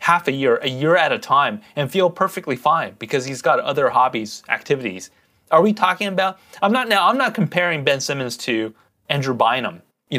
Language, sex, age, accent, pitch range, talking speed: English, male, 30-49, American, 140-215 Hz, 200 wpm